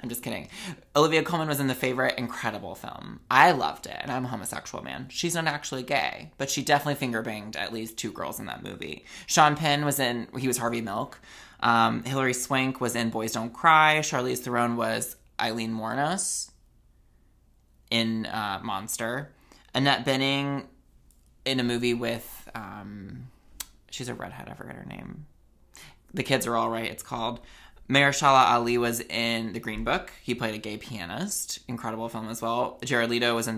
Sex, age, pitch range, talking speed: male, 20-39, 115-140 Hz, 180 wpm